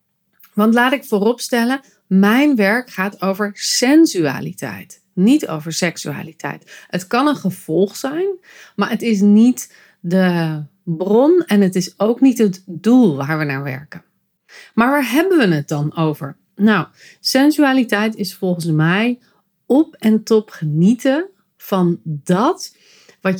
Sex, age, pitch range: female, 40-59, 190-260 Hz